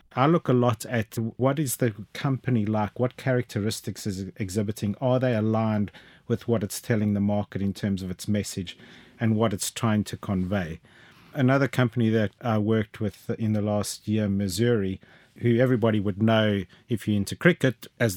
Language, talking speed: English, 180 wpm